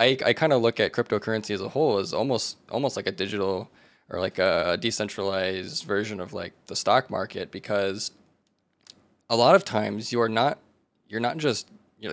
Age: 20-39